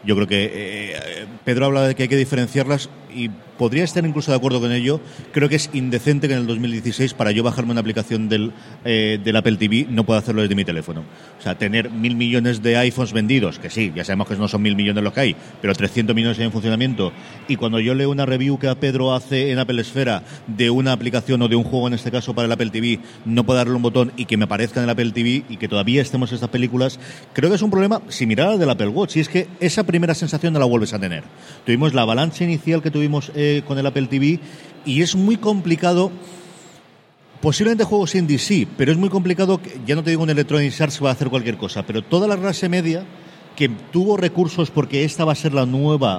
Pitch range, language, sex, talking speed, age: 115-155 Hz, Spanish, male, 245 wpm, 40-59